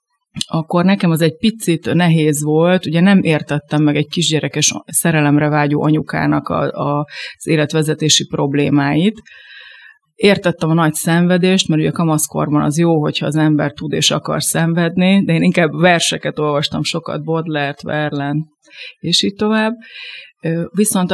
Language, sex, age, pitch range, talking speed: Hungarian, female, 30-49, 155-190 Hz, 135 wpm